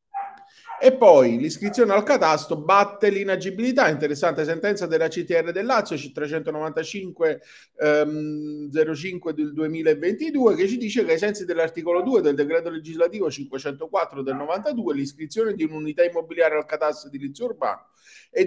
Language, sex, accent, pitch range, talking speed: Italian, male, native, 160-240 Hz, 135 wpm